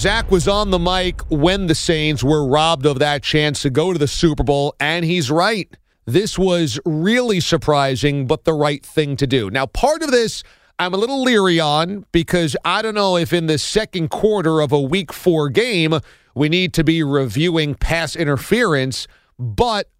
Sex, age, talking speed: male, 40-59, 190 wpm